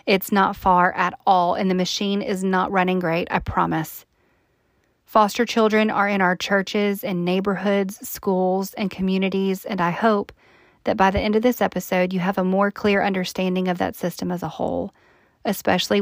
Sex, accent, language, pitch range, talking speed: female, American, English, 185-205 Hz, 180 wpm